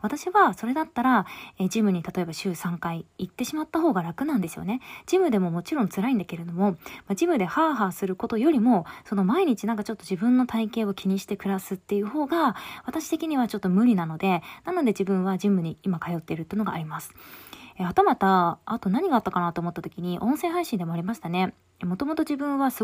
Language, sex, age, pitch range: Japanese, female, 20-39, 180-260 Hz